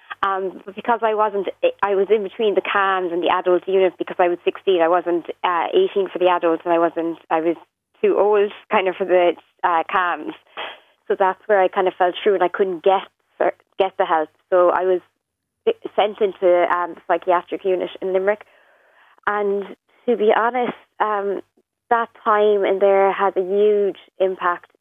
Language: English